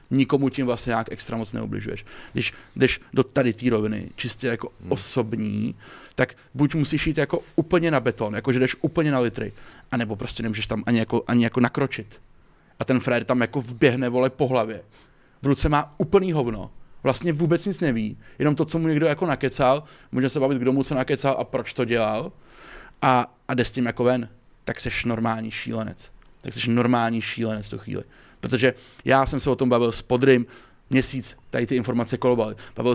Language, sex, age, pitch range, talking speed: Czech, male, 30-49, 115-145 Hz, 190 wpm